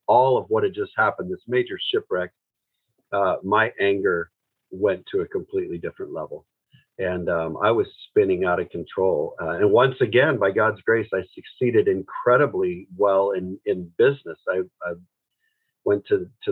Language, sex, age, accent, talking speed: English, male, 50-69, American, 165 wpm